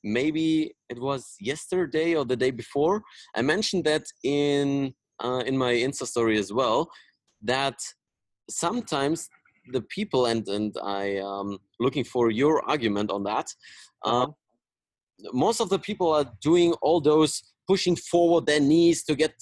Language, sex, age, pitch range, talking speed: German, male, 30-49, 120-155 Hz, 150 wpm